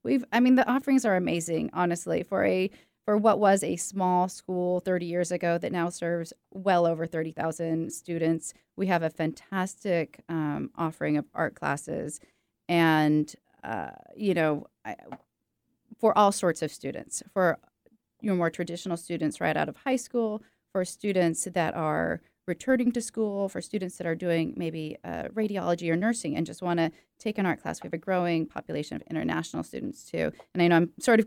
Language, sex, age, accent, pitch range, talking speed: English, female, 30-49, American, 165-200 Hz, 180 wpm